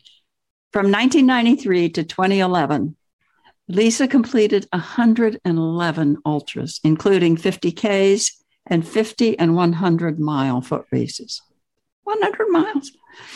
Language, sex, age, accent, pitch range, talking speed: English, female, 60-79, American, 160-210 Hz, 90 wpm